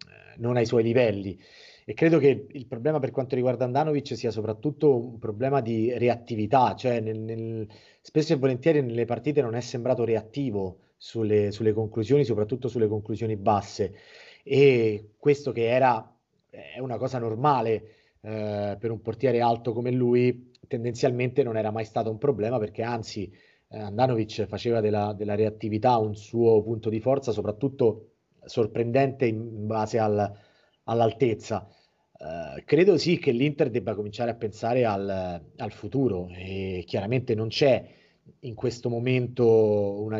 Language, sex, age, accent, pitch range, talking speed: Italian, male, 30-49, native, 110-125 Hz, 145 wpm